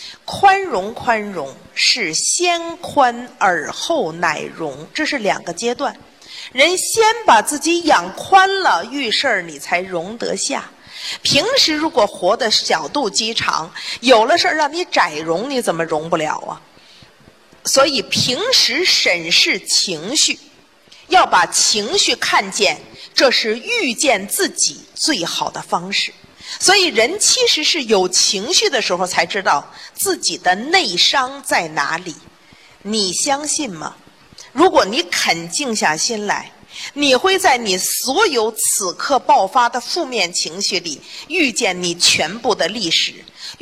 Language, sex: Chinese, female